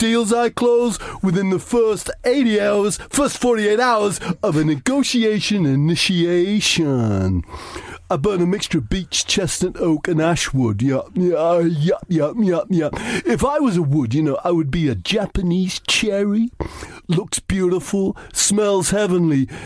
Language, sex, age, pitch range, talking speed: English, male, 40-59, 155-210 Hz, 145 wpm